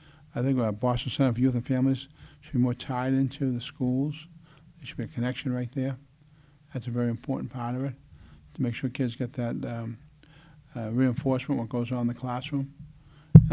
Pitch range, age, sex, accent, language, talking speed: 130-150 Hz, 50-69, male, American, English, 205 wpm